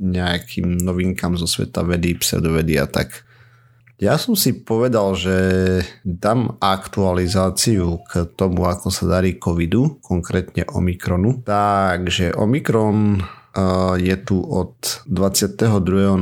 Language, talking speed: Slovak, 105 wpm